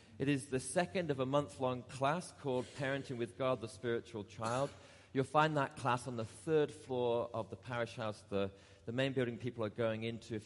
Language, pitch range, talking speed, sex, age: English, 110-140 Hz, 205 wpm, male, 40-59